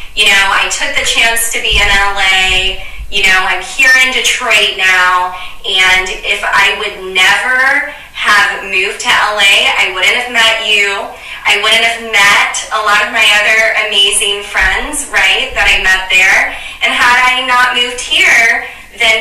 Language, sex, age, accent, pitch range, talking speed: English, female, 20-39, American, 195-225 Hz, 170 wpm